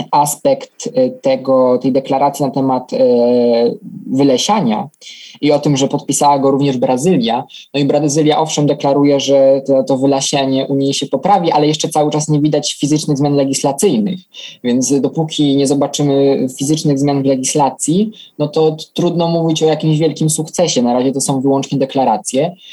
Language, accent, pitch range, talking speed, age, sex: Polish, native, 135-165 Hz, 155 wpm, 20-39, male